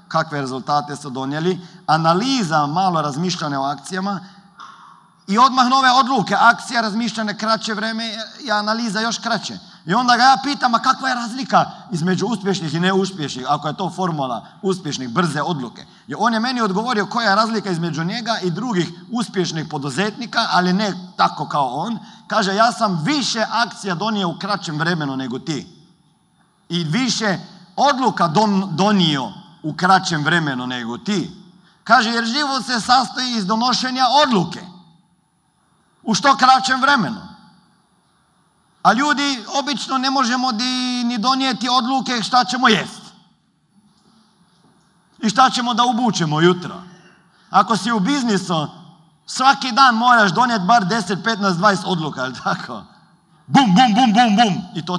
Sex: male